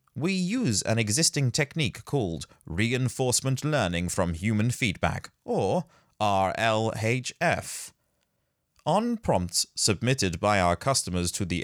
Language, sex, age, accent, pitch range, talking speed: English, male, 30-49, British, 95-130 Hz, 110 wpm